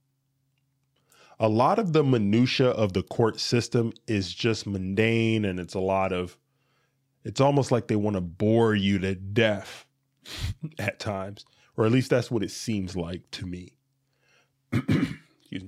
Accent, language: American, English